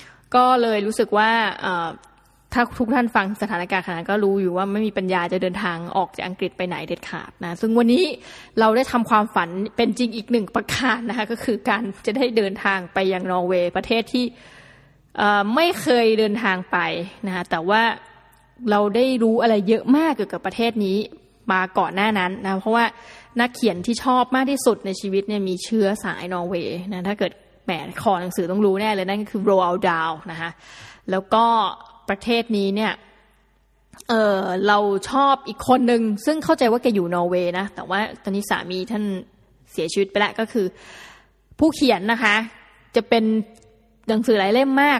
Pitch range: 195-235 Hz